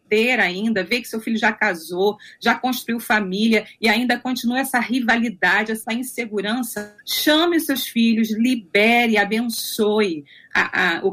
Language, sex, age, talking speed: Portuguese, female, 40-59, 125 wpm